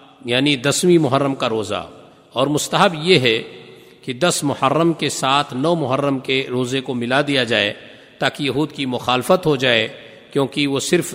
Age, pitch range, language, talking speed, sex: 50-69, 135-160 Hz, Urdu, 165 wpm, male